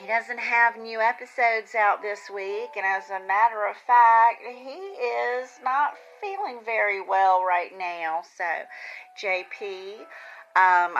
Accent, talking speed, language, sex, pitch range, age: American, 135 wpm, English, female, 175-230 Hz, 40-59